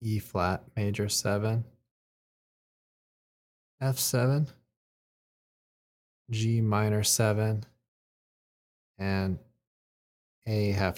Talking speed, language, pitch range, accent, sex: 60 wpm, English, 95-115 Hz, American, male